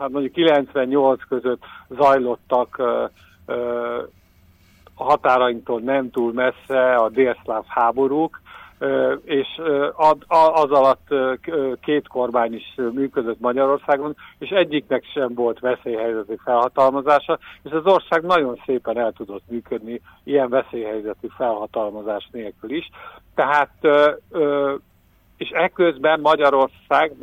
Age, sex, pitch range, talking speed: 50-69, male, 115-145 Hz, 115 wpm